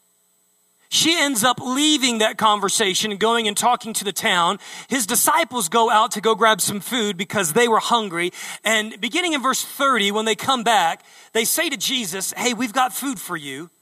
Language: English